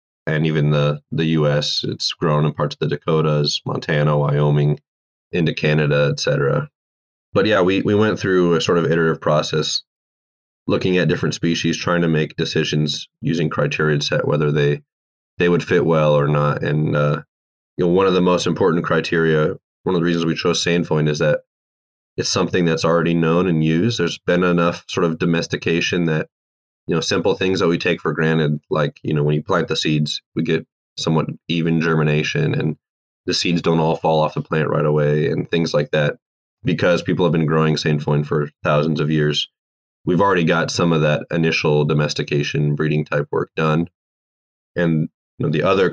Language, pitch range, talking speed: English, 75-85 Hz, 190 wpm